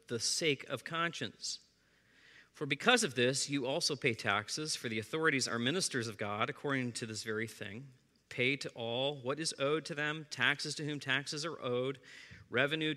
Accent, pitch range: American, 120-150 Hz